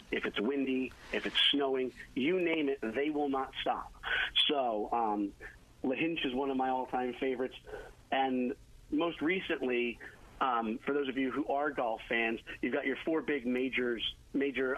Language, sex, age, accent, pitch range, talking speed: English, male, 40-59, American, 115-135 Hz, 165 wpm